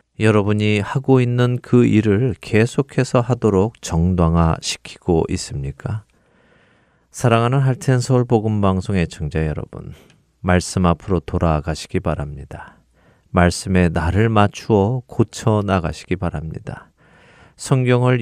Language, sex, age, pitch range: Korean, male, 40-59, 85-115 Hz